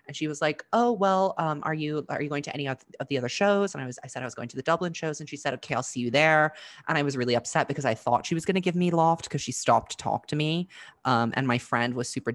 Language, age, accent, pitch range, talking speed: English, 20-39, American, 125-170 Hz, 320 wpm